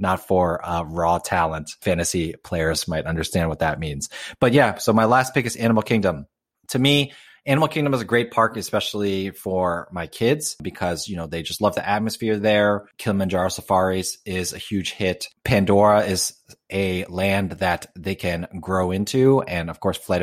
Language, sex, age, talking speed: English, male, 30-49, 180 wpm